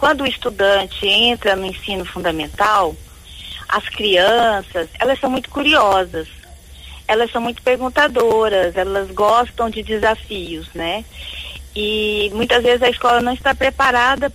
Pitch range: 200-255 Hz